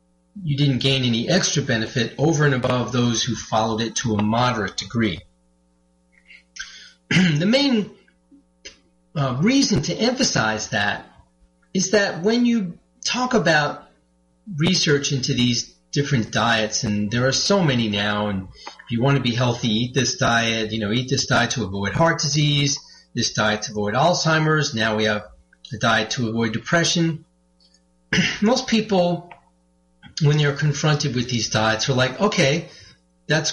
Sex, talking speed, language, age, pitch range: male, 150 wpm, English, 40-59, 105-160 Hz